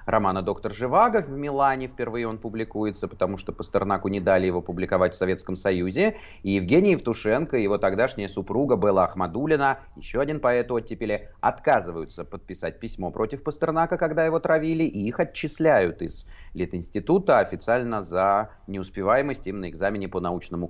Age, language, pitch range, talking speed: 30-49, Russian, 90-115 Hz, 150 wpm